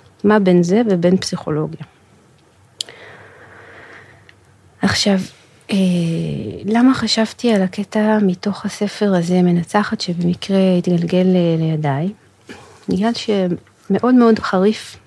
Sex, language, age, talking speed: female, Hebrew, 30-49, 90 wpm